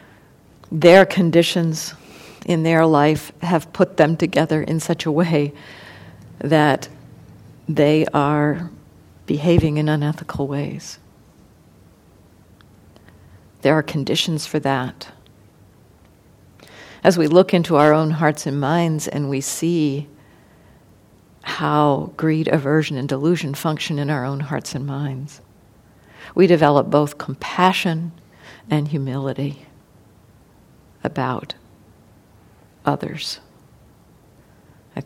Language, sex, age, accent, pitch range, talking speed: English, female, 50-69, American, 135-160 Hz, 100 wpm